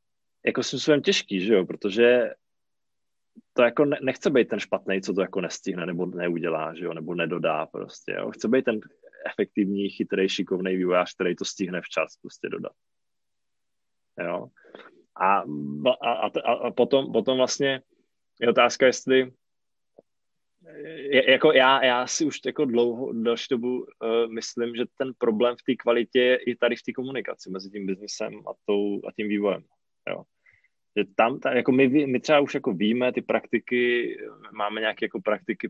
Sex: male